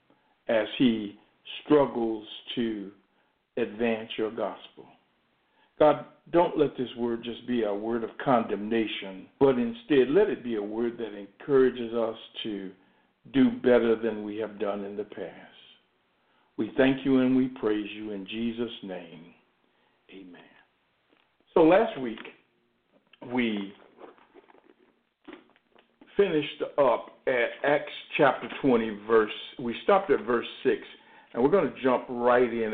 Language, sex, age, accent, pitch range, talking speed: English, male, 60-79, American, 110-130 Hz, 130 wpm